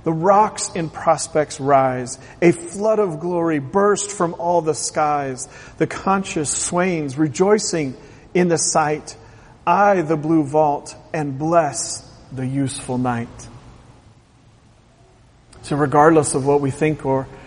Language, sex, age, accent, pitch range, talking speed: English, male, 40-59, American, 135-175 Hz, 125 wpm